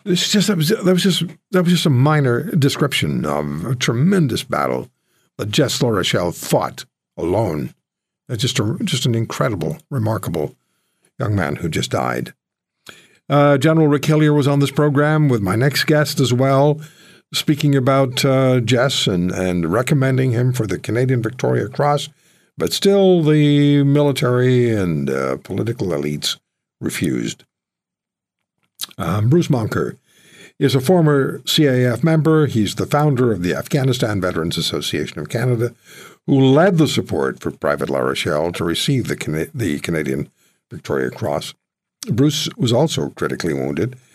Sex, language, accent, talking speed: male, English, American, 140 wpm